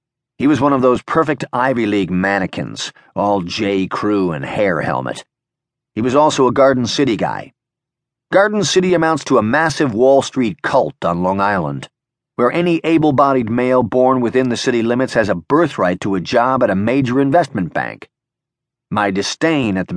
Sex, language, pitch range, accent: male, English, 120-150 Hz, American